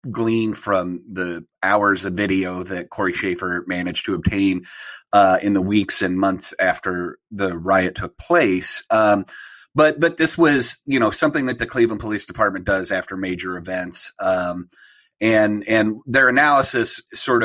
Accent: American